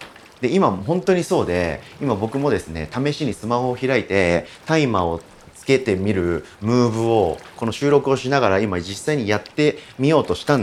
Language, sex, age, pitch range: Japanese, male, 40-59, 95-145 Hz